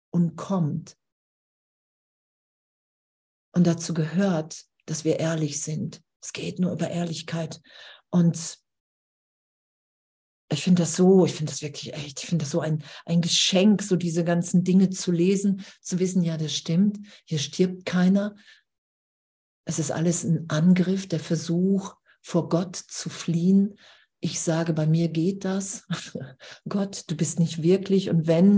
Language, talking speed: German, 145 wpm